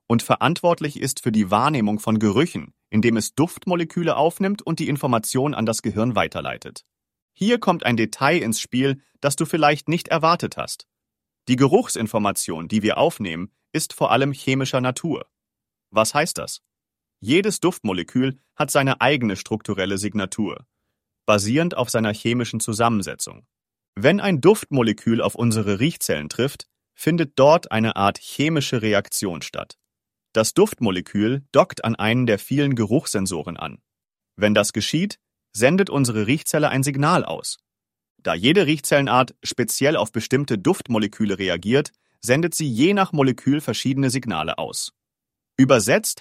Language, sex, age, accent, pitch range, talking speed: English, male, 40-59, German, 110-155 Hz, 135 wpm